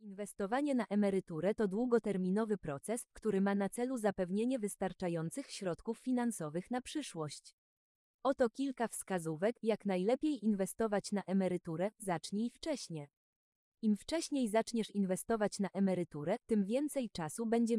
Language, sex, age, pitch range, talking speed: Polish, female, 20-39, 185-240 Hz, 120 wpm